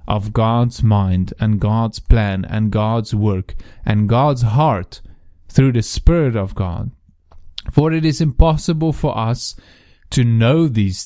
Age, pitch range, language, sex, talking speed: 30-49, 100-130 Hz, English, male, 140 wpm